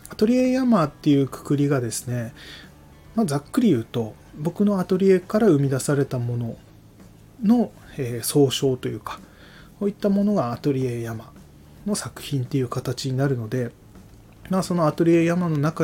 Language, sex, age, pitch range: Japanese, male, 20-39, 120-165 Hz